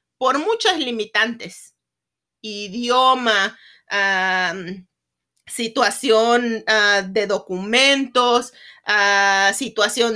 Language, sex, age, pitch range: English, female, 40-59, 215-280 Hz